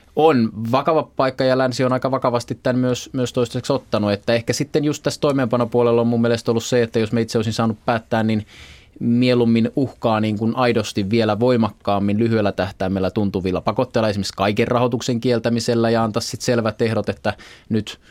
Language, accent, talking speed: Finnish, native, 180 wpm